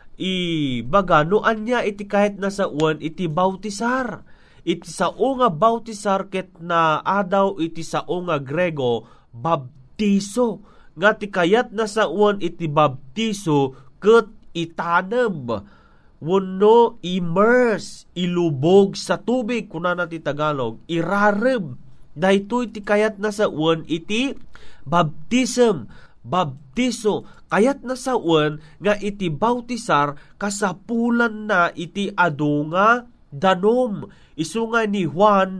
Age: 30-49